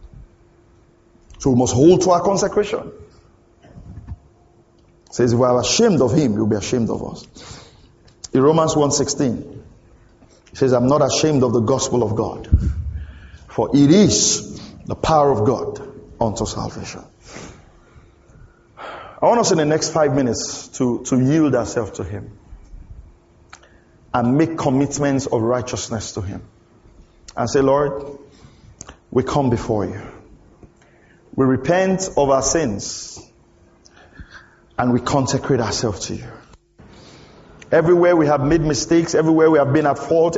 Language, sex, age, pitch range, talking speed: English, male, 50-69, 120-160 Hz, 135 wpm